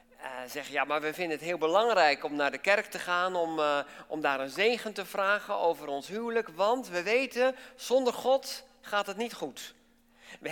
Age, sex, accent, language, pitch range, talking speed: 50-69, male, Dutch, English, 150-220 Hz, 205 wpm